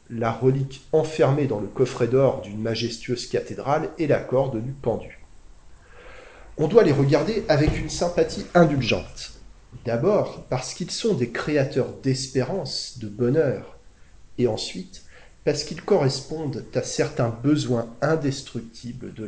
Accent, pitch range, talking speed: French, 100-135 Hz, 130 wpm